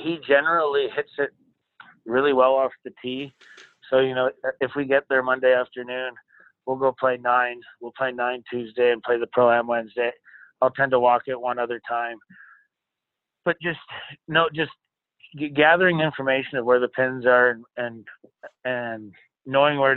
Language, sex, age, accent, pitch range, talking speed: English, male, 30-49, American, 120-130 Hz, 160 wpm